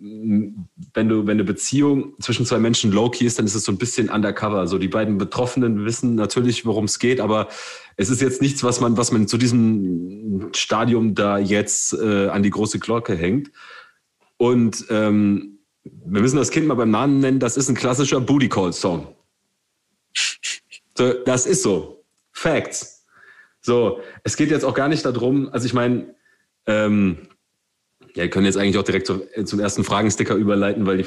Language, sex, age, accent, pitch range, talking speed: German, male, 30-49, German, 105-125 Hz, 180 wpm